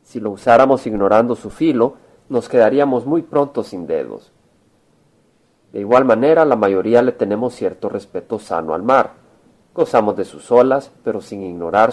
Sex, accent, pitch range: male, Mexican, 105-130 Hz